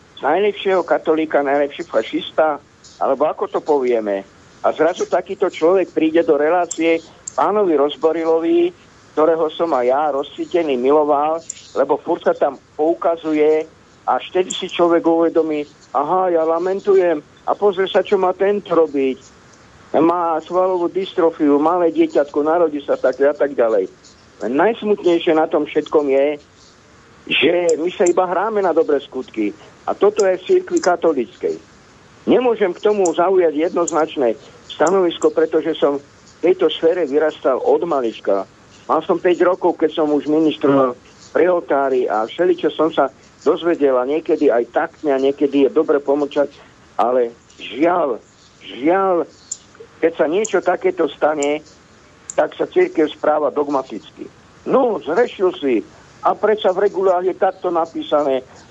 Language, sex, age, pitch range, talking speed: Slovak, male, 50-69, 150-185 Hz, 135 wpm